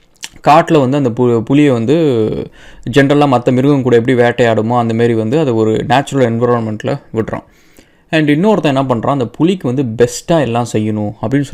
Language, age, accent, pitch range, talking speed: English, 20-39, Indian, 120-150 Hz, 110 wpm